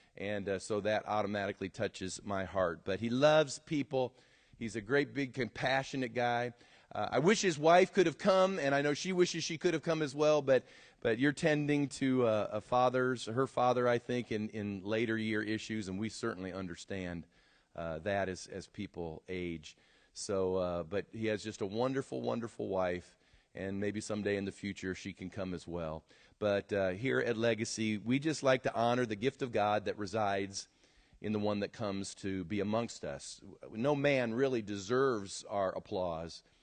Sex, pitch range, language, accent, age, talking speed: male, 100-140 Hz, English, American, 40-59, 190 wpm